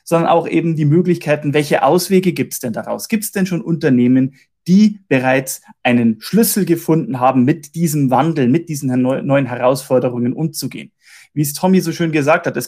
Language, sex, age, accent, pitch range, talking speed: German, male, 30-49, German, 135-175 Hz, 180 wpm